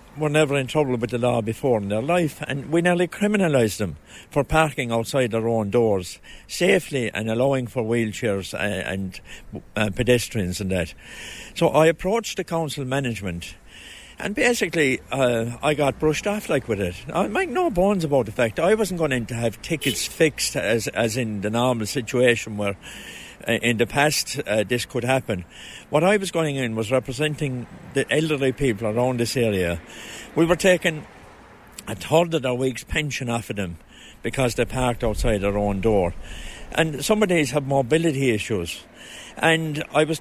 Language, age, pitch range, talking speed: English, 60-79, 115-160 Hz, 180 wpm